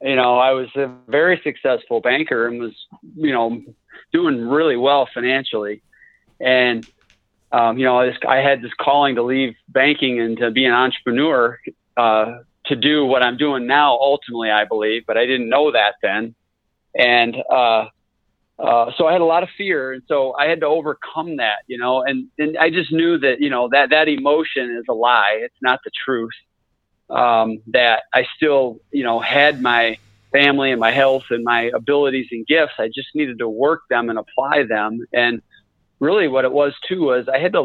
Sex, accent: male, American